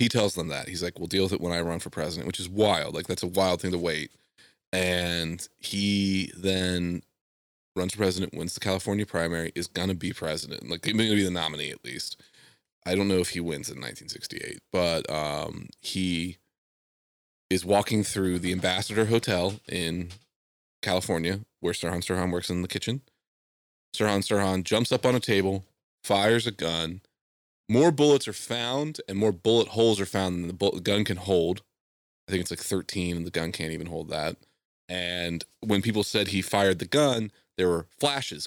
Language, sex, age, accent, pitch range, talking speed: English, male, 30-49, American, 85-105 Hz, 190 wpm